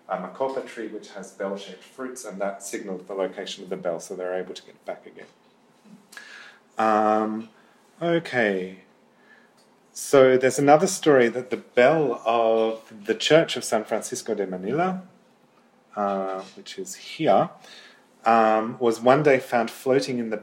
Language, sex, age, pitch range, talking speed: English, male, 30-49, 95-125 Hz, 155 wpm